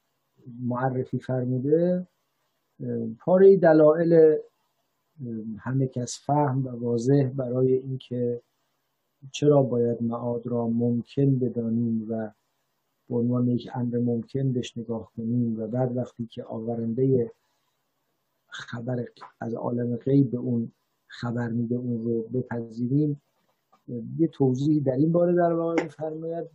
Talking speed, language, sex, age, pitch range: 110 wpm, English, male, 50-69, 120-145 Hz